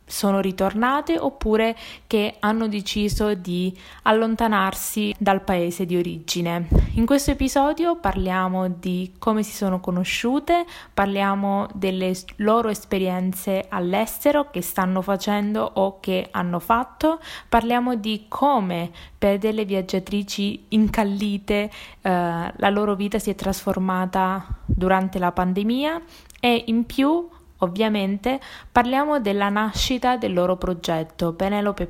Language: Italian